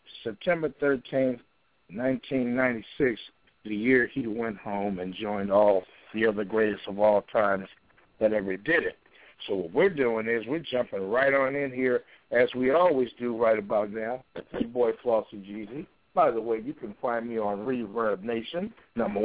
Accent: American